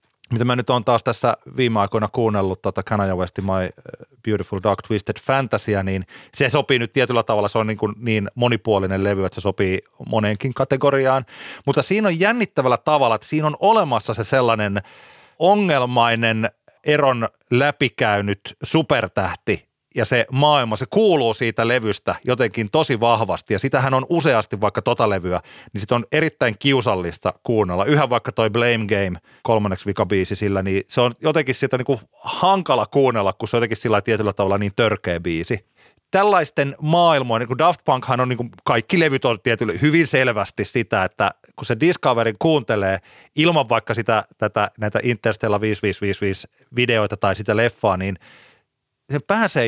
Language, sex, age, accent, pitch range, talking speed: Finnish, male, 30-49, native, 100-135 Hz, 160 wpm